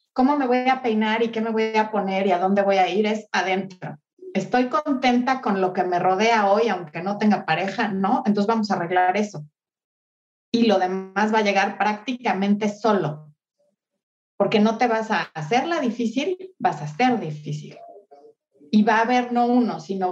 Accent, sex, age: Mexican, female, 30-49